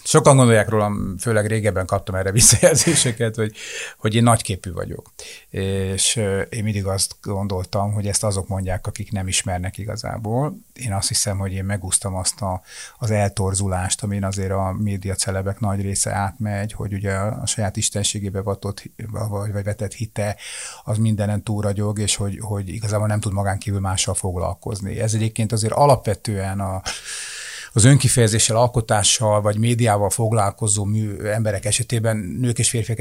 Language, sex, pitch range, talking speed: Hungarian, male, 95-110 Hz, 150 wpm